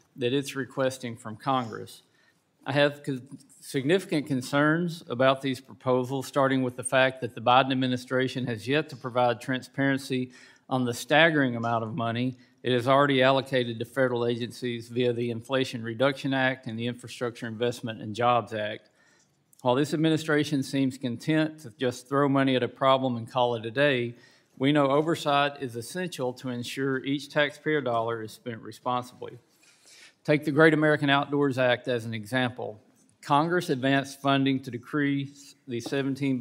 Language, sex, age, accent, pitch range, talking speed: English, male, 40-59, American, 120-140 Hz, 160 wpm